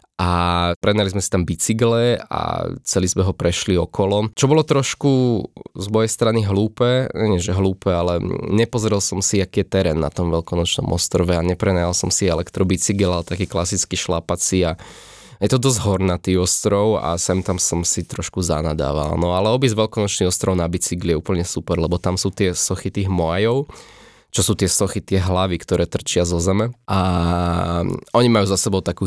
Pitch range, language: 90-105 Hz, Slovak